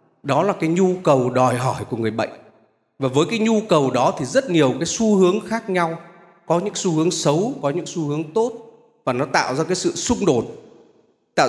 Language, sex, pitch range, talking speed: Vietnamese, male, 140-210 Hz, 225 wpm